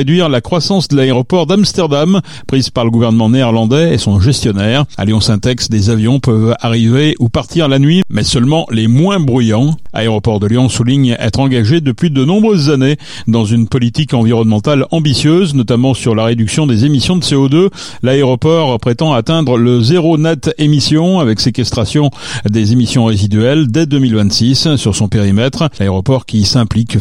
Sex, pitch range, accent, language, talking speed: male, 115-155 Hz, French, French, 160 wpm